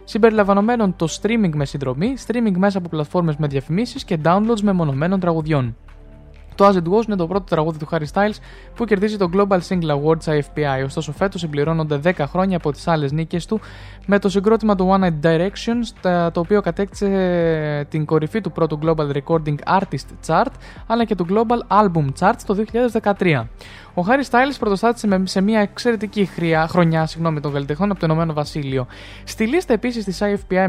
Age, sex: 20-39, male